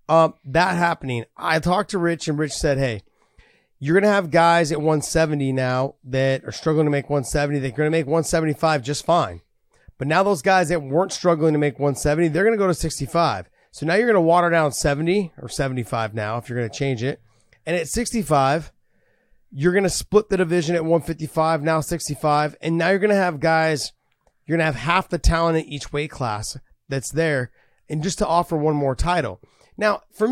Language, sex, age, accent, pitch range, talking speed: English, male, 30-49, American, 145-180 Hz, 210 wpm